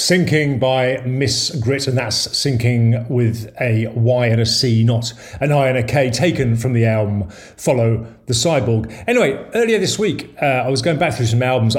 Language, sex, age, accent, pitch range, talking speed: English, male, 40-59, British, 115-150 Hz, 195 wpm